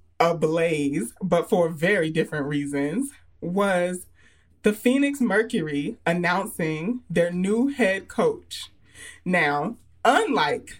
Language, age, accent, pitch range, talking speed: English, 30-49, American, 175-250 Hz, 100 wpm